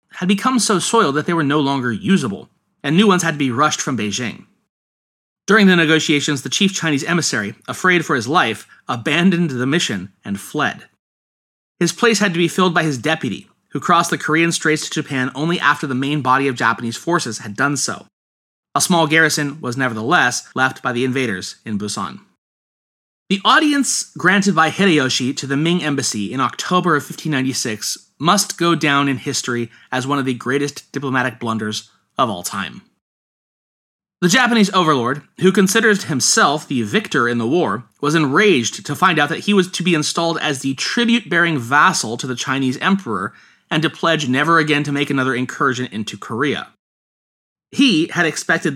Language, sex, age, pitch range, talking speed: English, male, 30-49, 130-175 Hz, 180 wpm